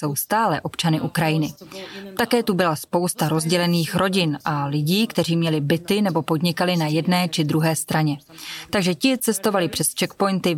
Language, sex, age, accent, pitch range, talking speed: Czech, female, 20-39, native, 155-190 Hz, 155 wpm